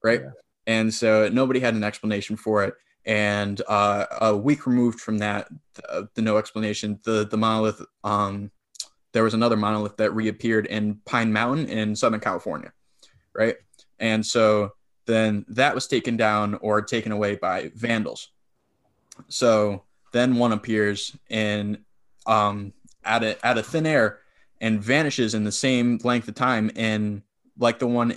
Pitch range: 105-120 Hz